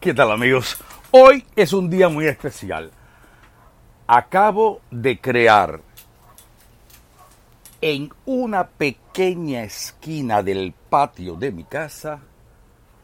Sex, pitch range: male, 95-135 Hz